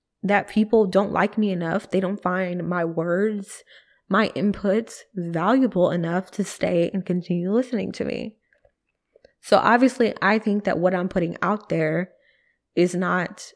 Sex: female